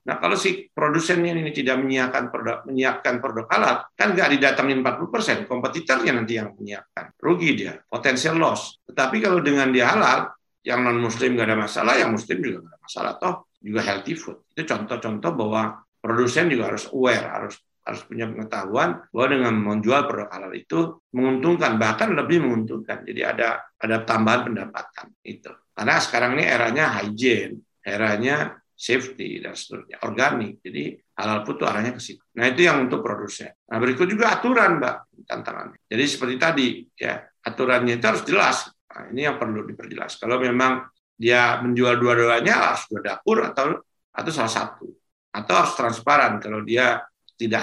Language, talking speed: Indonesian, 165 wpm